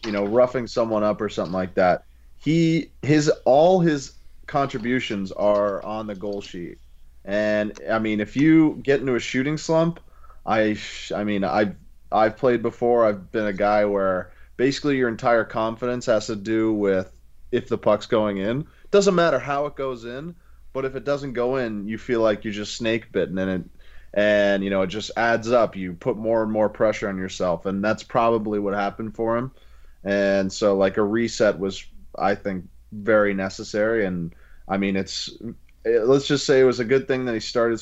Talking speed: 200 wpm